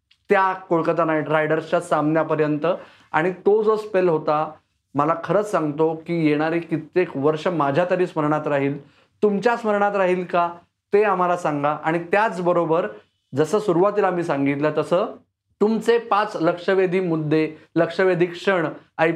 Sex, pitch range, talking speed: male, 150-180 Hz, 130 wpm